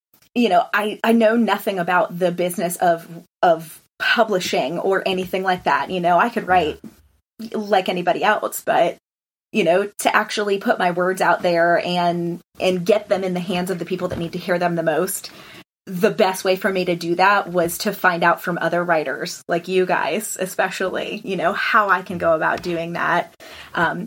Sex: female